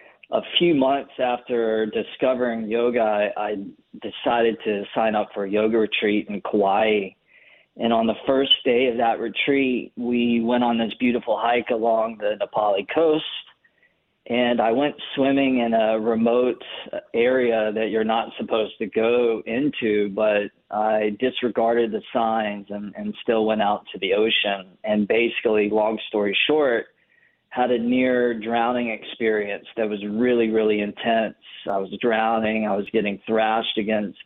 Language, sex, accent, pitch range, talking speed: English, male, American, 105-120 Hz, 150 wpm